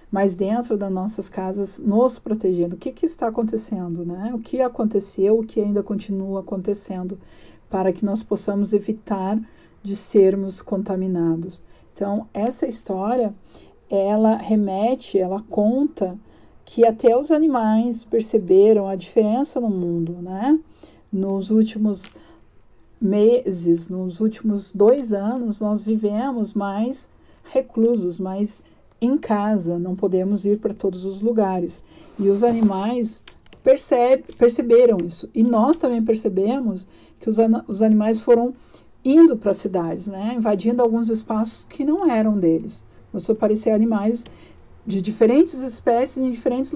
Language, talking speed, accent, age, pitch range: Portuguese, 135 wpm, Brazilian, 50-69, 195-235 Hz